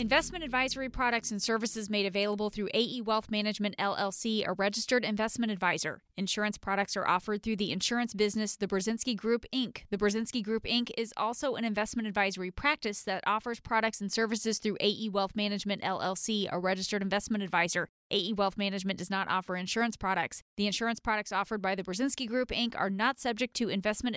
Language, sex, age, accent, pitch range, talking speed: English, female, 20-39, American, 200-245 Hz, 185 wpm